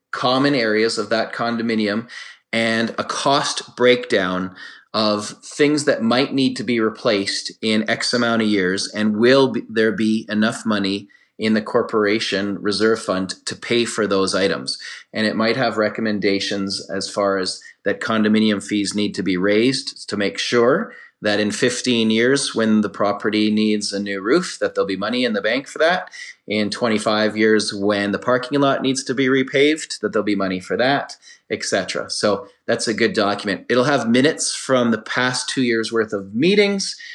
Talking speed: 180 wpm